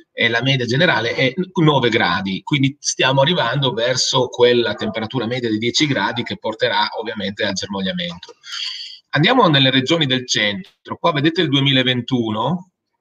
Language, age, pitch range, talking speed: Italian, 30-49, 120-175 Hz, 145 wpm